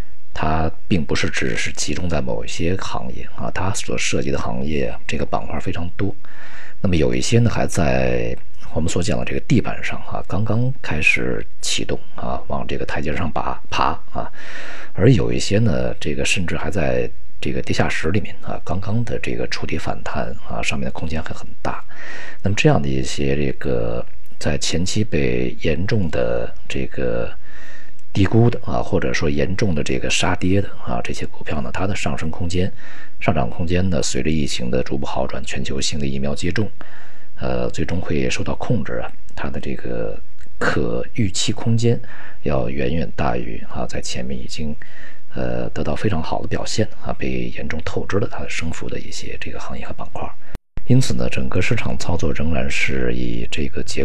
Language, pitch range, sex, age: Chinese, 70-95 Hz, male, 50-69